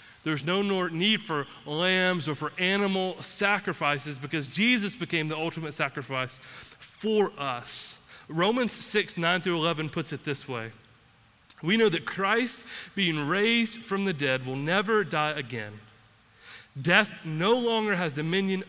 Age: 30-49